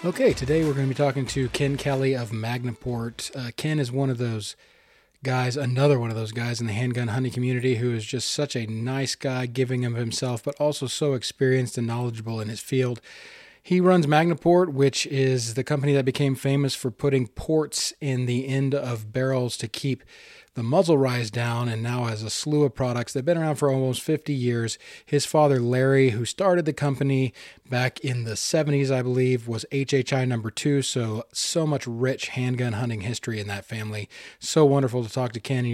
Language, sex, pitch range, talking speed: English, male, 120-140 Hz, 200 wpm